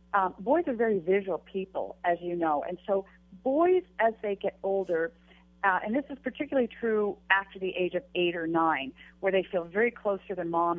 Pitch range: 170-210 Hz